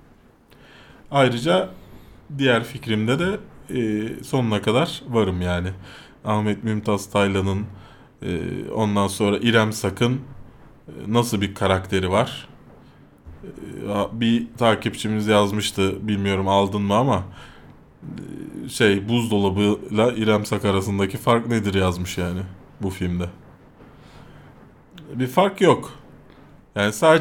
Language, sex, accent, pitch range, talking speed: Turkish, male, native, 105-150 Hz, 90 wpm